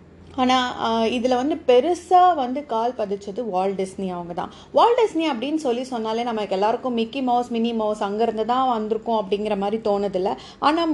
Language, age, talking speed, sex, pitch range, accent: Tamil, 30-49, 160 wpm, female, 210-280 Hz, native